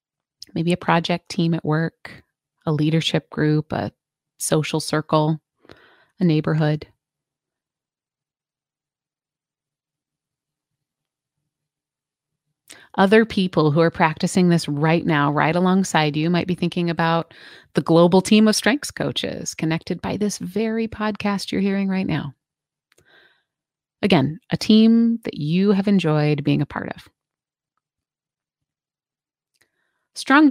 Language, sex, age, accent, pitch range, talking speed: English, female, 30-49, American, 155-195 Hz, 110 wpm